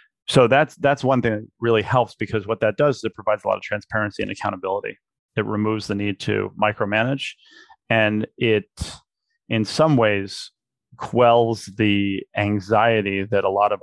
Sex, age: male, 30-49